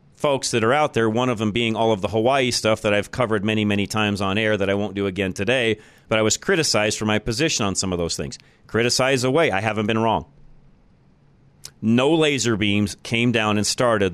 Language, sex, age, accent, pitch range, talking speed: English, male, 40-59, American, 100-125 Hz, 225 wpm